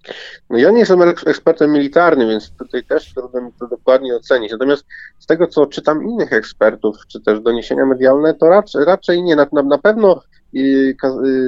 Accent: native